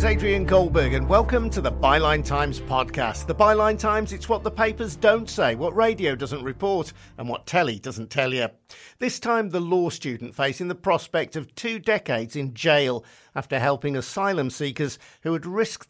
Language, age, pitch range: English, 50-69, 120-170 Hz